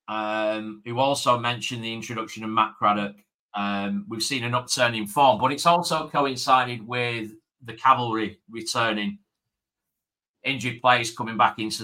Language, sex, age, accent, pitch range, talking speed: English, male, 40-59, British, 110-140 Hz, 145 wpm